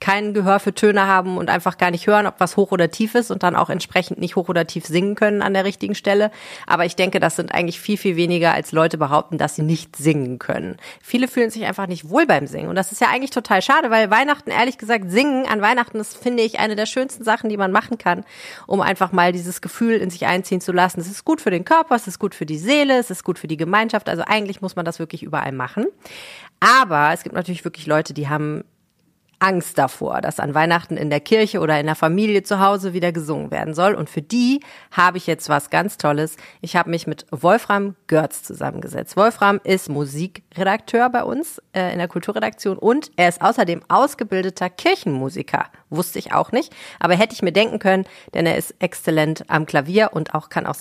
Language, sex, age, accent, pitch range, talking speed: German, female, 30-49, German, 170-215 Hz, 230 wpm